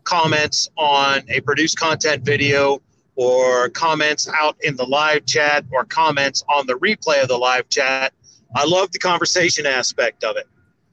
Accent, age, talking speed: American, 40-59, 160 wpm